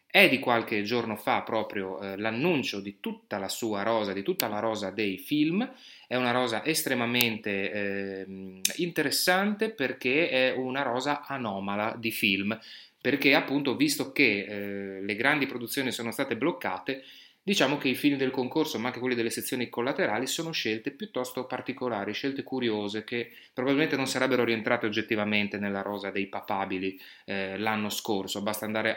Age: 30-49